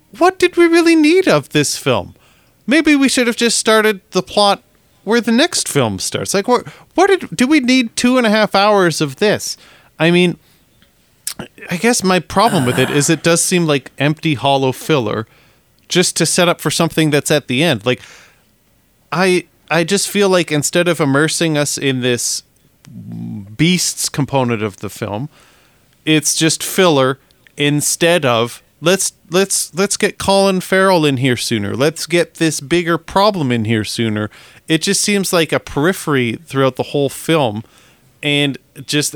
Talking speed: 170 wpm